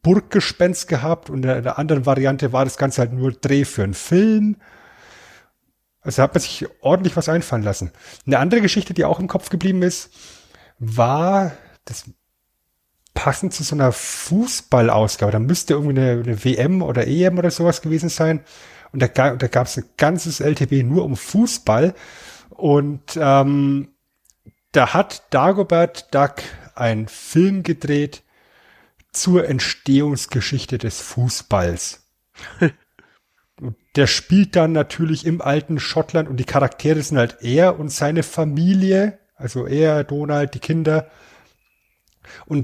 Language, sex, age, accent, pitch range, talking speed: German, male, 30-49, German, 130-170 Hz, 135 wpm